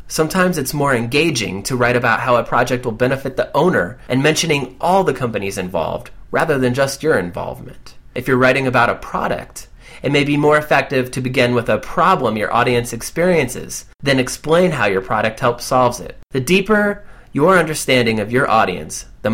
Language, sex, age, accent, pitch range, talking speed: English, male, 30-49, American, 120-150 Hz, 185 wpm